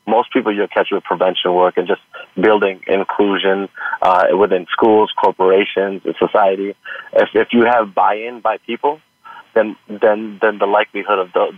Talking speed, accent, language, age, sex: 160 wpm, American, English, 30-49, male